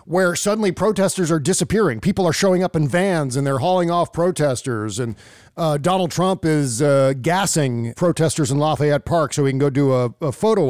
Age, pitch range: 40-59, 135-175 Hz